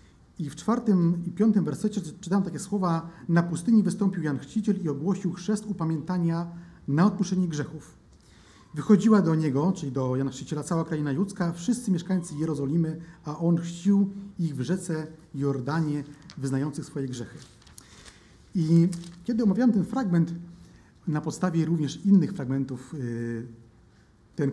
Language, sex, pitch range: Polish, male, 145-190 Hz